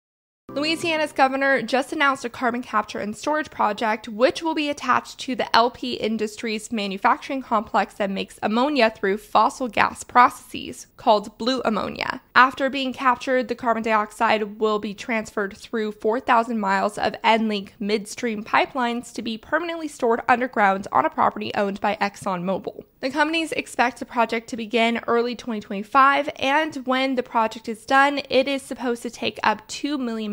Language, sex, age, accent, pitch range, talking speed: English, female, 20-39, American, 210-255 Hz, 160 wpm